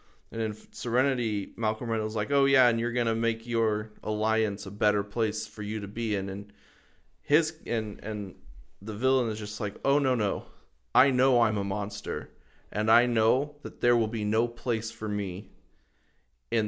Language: English